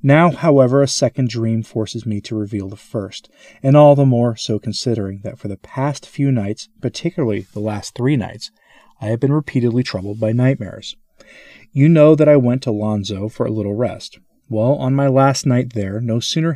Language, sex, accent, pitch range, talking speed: English, male, American, 110-140 Hz, 195 wpm